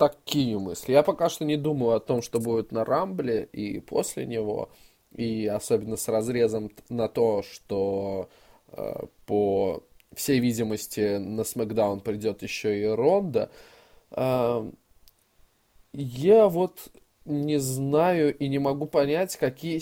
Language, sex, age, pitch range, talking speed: Russian, male, 20-39, 110-145 Hz, 130 wpm